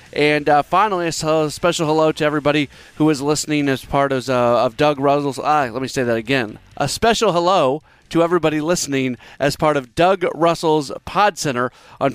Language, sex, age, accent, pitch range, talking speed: English, male, 30-49, American, 135-170 Hz, 185 wpm